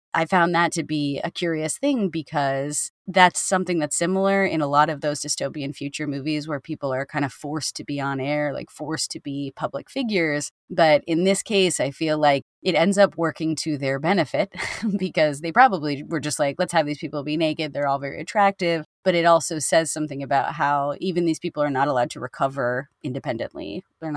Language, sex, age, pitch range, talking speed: English, female, 30-49, 140-170 Hz, 210 wpm